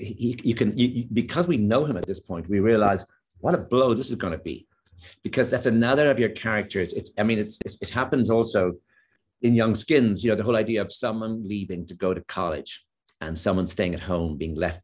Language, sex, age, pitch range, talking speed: English, male, 50-69, 90-110 Hz, 235 wpm